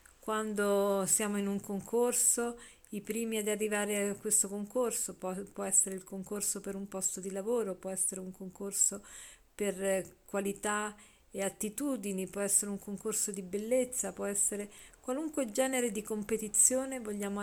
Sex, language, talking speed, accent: female, Italian, 150 wpm, native